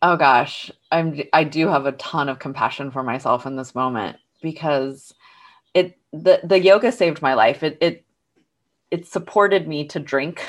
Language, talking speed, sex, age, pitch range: English, 170 wpm, female, 30-49, 145-185 Hz